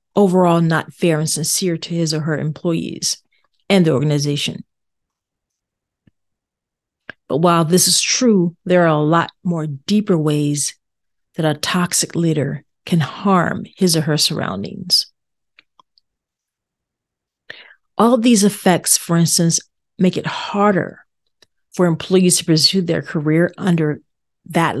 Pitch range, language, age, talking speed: 160-195 Hz, English, 40-59, 125 wpm